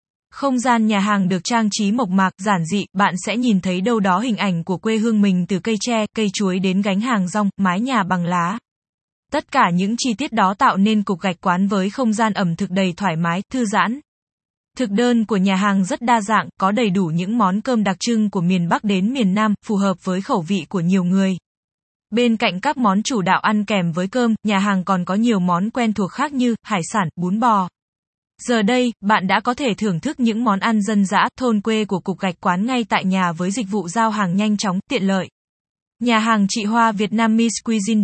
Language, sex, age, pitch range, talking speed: Vietnamese, female, 20-39, 190-230 Hz, 235 wpm